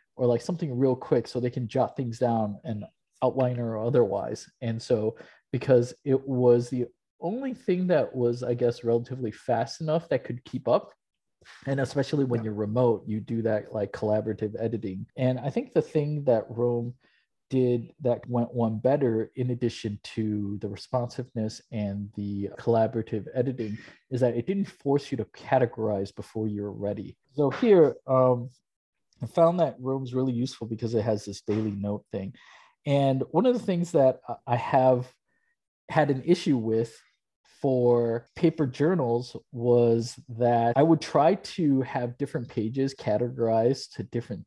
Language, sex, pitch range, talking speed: English, male, 115-135 Hz, 160 wpm